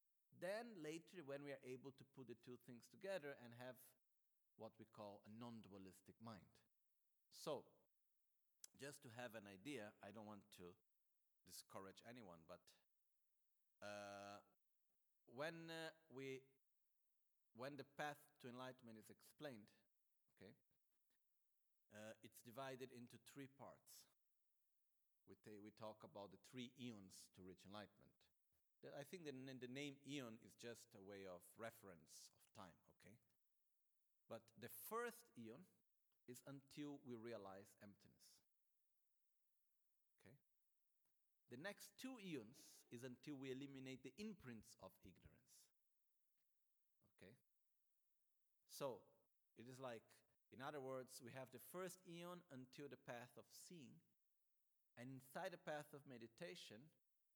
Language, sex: Italian, male